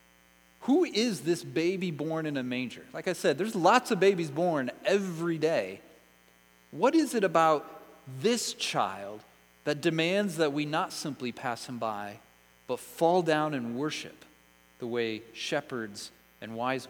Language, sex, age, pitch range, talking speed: English, male, 30-49, 115-170 Hz, 155 wpm